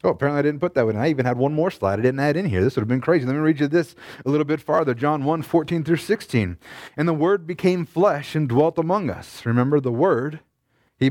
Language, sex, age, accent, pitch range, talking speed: English, male, 30-49, American, 130-170 Hz, 270 wpm